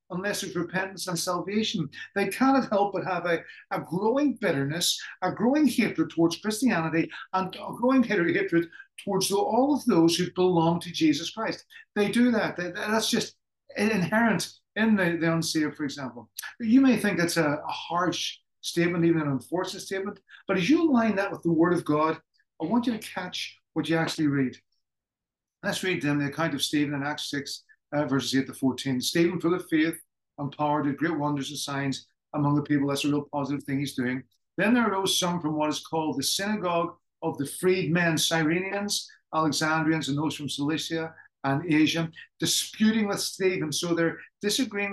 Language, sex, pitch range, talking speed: English, male, 150-200 Hz, 185 wpm